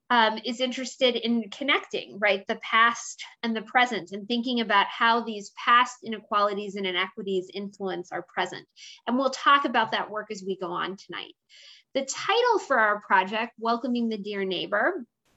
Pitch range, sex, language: 210-275 Hz, female, English